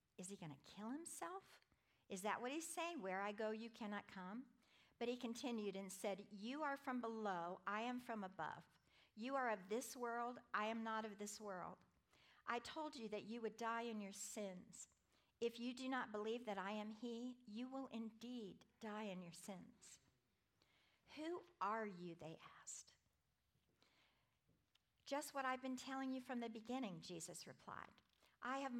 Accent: American